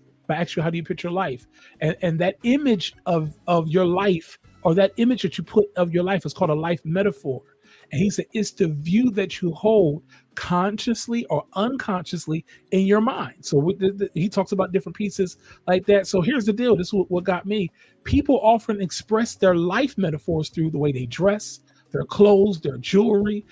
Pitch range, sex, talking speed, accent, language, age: 180-220 Hz, male, 210 wpm, American, English, 40-59